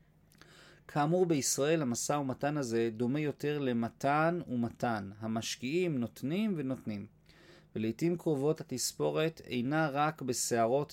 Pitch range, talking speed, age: 120-170 Hz, 100 wpm, 40-59